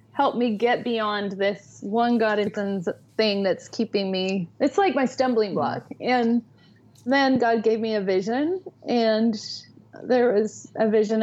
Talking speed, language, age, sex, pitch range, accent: 150 wpm, English, 30-49, female, 205-250 Hz, American